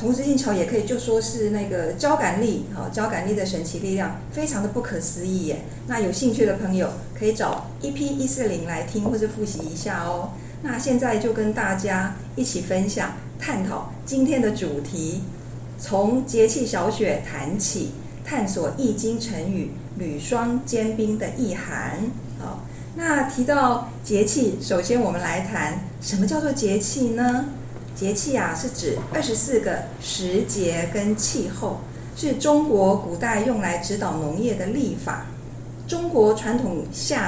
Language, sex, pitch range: Chinese, female, 170-240 Hz